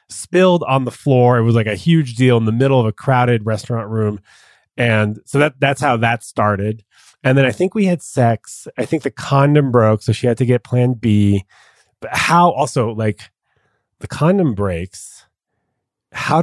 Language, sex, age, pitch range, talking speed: English, male, 30-49, 105-130 Hz, 185 wpm